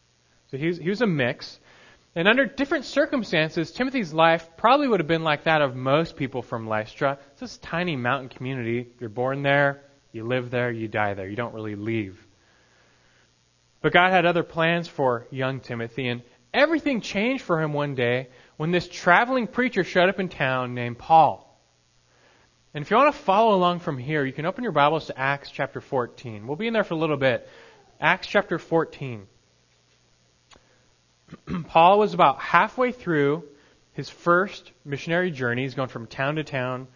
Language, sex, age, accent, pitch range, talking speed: English, male, 20-39, American, 125-180 Hz, 175 wpm